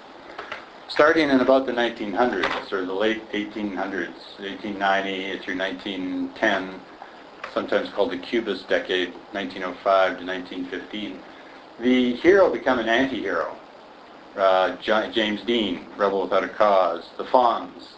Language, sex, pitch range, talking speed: English, male, 100-130 Hz, 125 wpm